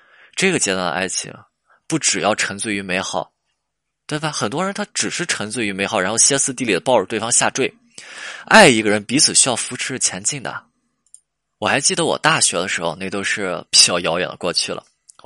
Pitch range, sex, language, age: 95-120 Hz, male, Chinese, 20-39